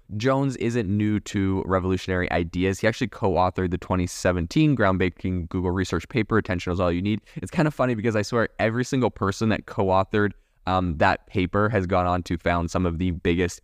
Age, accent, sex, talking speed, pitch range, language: 20-39, American, male, 195 wpm, 90-110 Hz, English